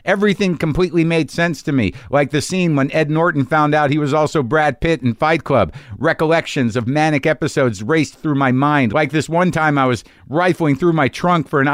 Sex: male